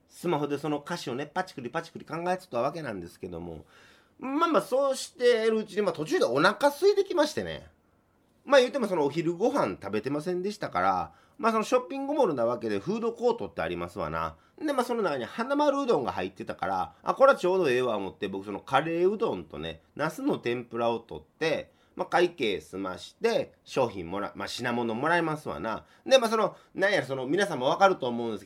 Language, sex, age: Japanese, male, 30-49